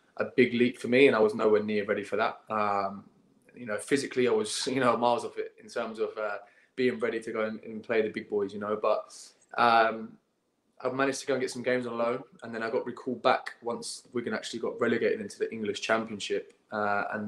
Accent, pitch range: British, 110-130 Hz